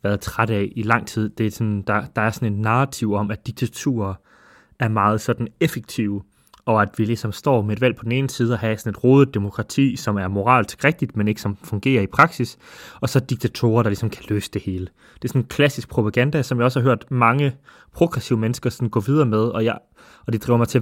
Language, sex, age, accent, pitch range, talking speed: Danish, male, 20-39, native, 105-130 Hz, 235 wpm